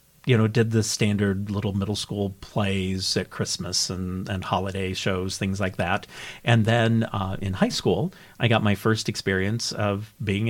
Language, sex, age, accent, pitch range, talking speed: English, male, 50-69, American, 100-120 Hz, 175 wpm